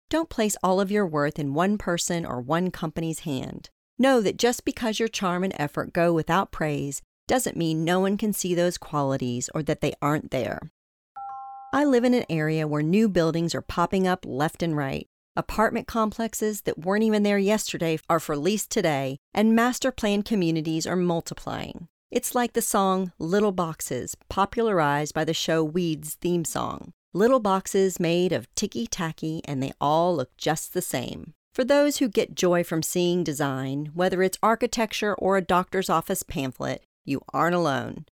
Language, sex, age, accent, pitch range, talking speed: English, female, 40-59, American, 160-215 Hz, 175 wpm